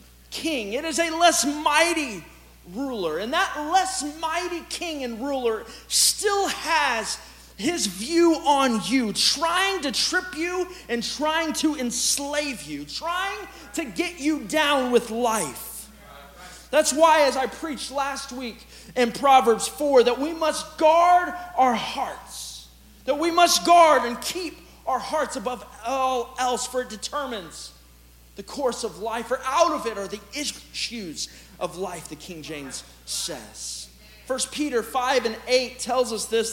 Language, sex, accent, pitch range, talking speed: English, male, American, 220-310 Hz, 150 wpm